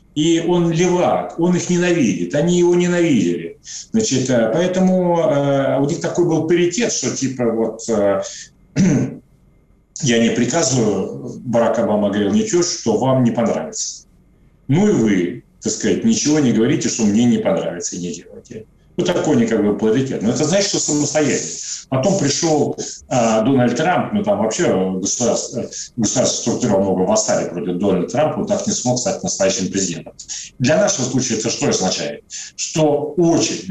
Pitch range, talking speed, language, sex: 115-175 Hz, 150 wpm, Russian, male